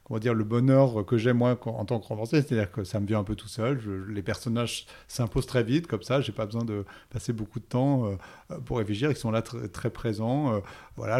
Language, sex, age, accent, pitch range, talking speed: French, male, 30-49, French, 110-130 Hz, 245 wpm